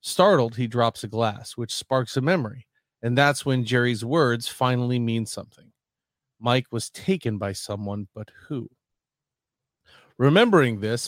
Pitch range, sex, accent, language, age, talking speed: 110-135 Hz, male, American, English, 40-59, 140 wpm